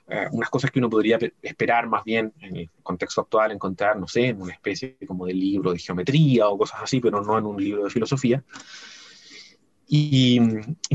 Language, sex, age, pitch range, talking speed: Spanish, male, 30-49, 100-125 Hz, 205 wpm